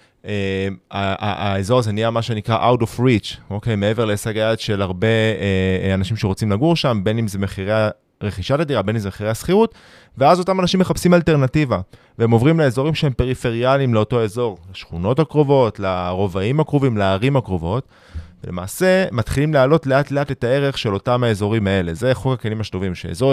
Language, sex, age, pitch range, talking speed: Hebrew, male, 20-39, 100-135 Hz, 170 wpm